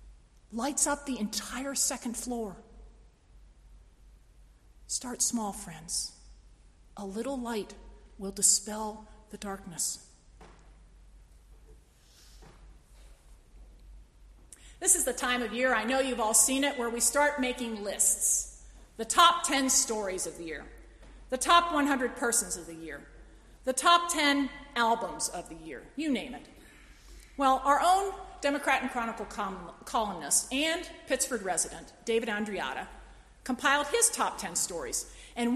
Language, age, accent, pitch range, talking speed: English, 40-59, American, 205-275 Hz, 125 wpm